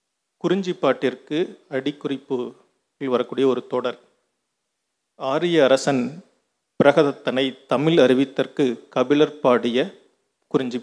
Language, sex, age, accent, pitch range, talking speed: Tamil, male, 40-59, native, 130-155 Hz, 70 wpm